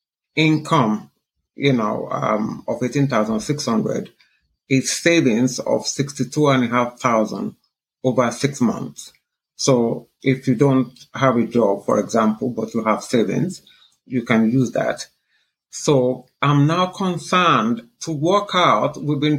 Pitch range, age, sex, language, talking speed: 125-160 Hz, 50-69, male, English, 120 wpm